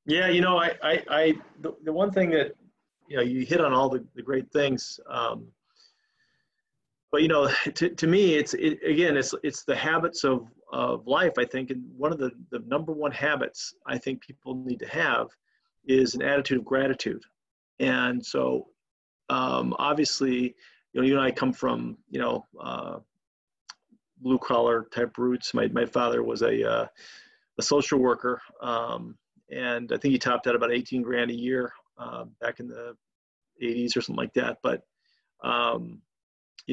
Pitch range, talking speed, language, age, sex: 125-160 Hz, 180 wpm, English, 40-59, male